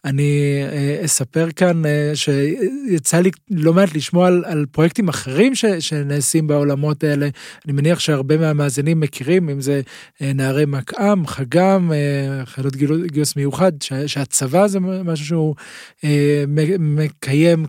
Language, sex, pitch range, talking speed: Hebrew, male, 145-165 Hz, 115 wpm